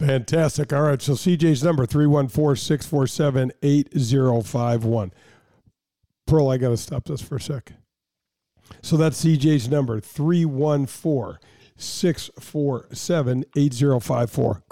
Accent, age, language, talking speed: American, 50-69, English, 85 wpm